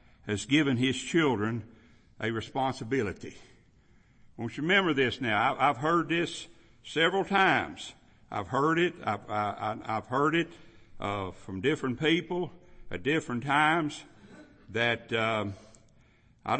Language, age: English, 60-79